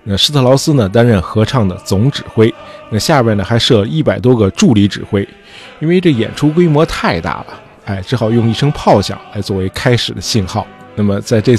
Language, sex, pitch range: Chinese, male, 100-125 Hz